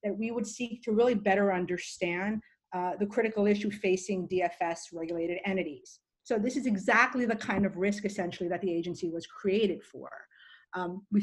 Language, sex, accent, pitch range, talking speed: English, female, American, 185-220 Hz, 170 wpm